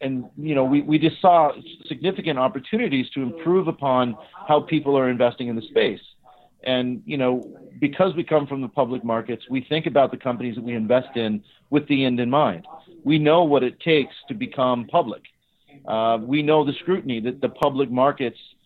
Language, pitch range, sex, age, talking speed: English, 120-150 Hz, male, 40-59, 195 wpm